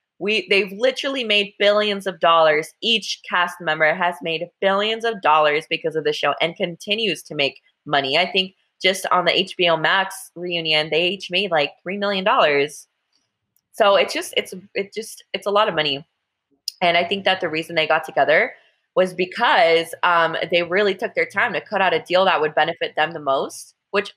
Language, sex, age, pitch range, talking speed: English, female, 20-39, 160-205 Hz, 195 wpm